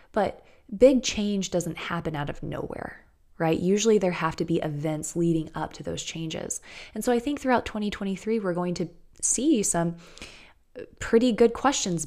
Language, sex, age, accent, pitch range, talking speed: English, female, 20-39, American, 165-205 Hz, 170 wpm